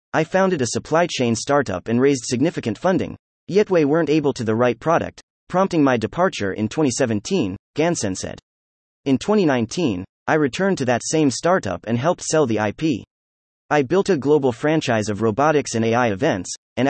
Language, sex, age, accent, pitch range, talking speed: English, male, 30-49, American, 110-160 Hz, 175 wpm